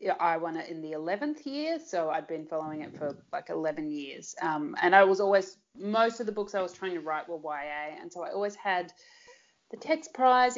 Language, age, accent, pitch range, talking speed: English, 30-49, Australian, 170-225 Hz, 225 wpm